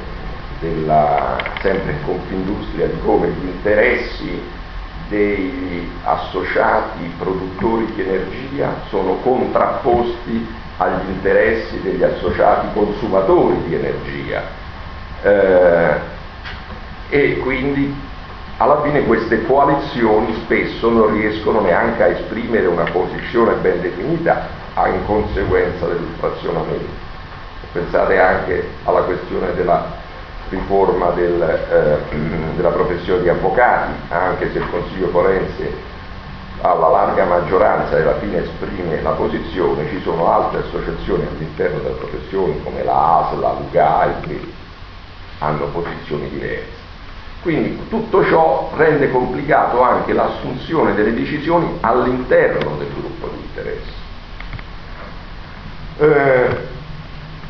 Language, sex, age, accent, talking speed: Italian, male, 50-69, native, 105 wpm